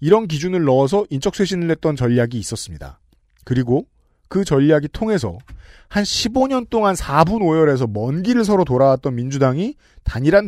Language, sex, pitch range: Korean, male, 120-200 Hz